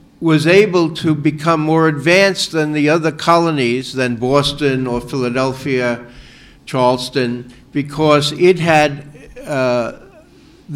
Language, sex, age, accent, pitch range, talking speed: Italian, male, 60-79, American, 125-155 Hz, 105 wpm